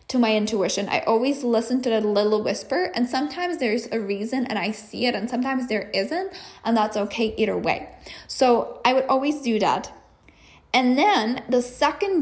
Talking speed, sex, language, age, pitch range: 185 wpm, female, English, 10-29, 220-270 Hz